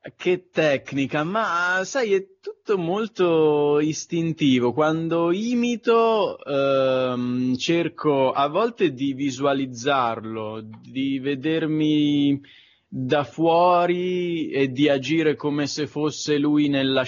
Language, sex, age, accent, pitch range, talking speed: Italian, male, 20-39, native, 115-150 Hz, 100 wpm